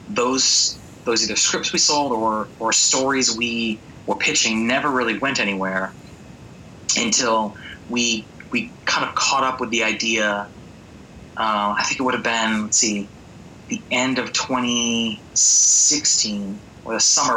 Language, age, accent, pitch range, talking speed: English, 20-39, American, 105-125 Hz, 145 wpm